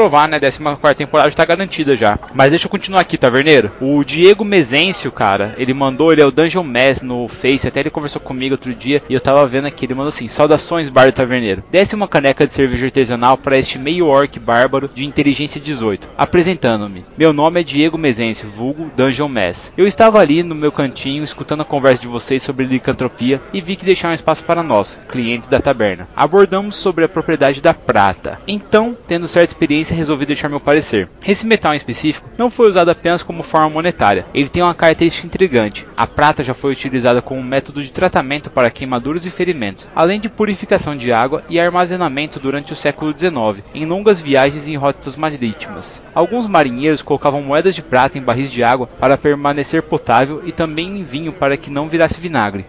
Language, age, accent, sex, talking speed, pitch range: Portuguese, 20-39, Brazilian, male, 195 wpm, 135-170 Hz